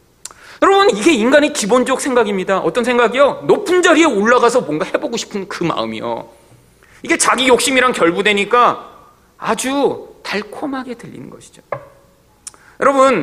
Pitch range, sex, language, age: 185-295 Hz, male, Korean, 40-59